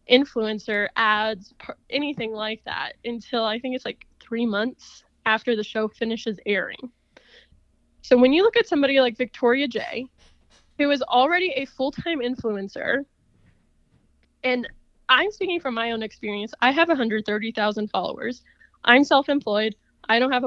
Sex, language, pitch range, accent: female, English, 215-260 Hz, American